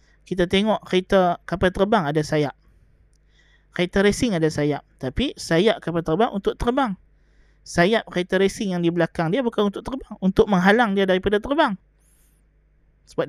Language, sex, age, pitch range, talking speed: Malay, male, 20-39, 160-190 Hz, 150 wpm